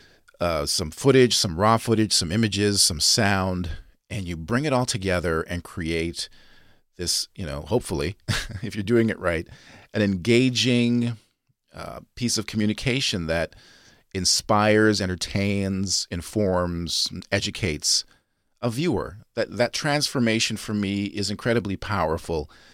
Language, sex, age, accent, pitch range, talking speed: English, male, 40-59, American, 85-110 Hz, 125 wpm